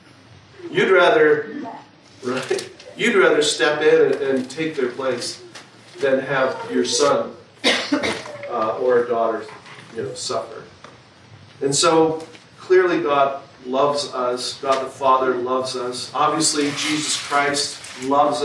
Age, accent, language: 40-59, American, English